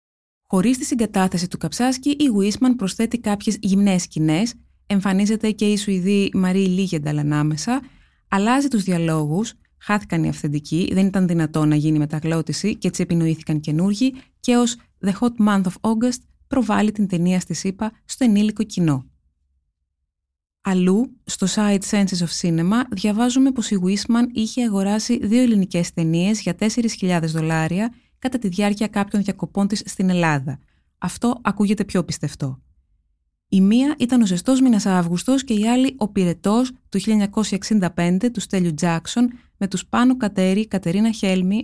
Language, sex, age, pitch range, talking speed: Greek, female, 20-39, 175-225 Hz, 145 wpm